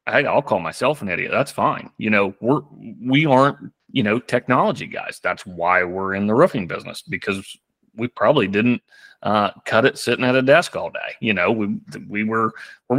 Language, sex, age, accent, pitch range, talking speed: English, male, 30-49, American, 100-130 Hz, 195 wpm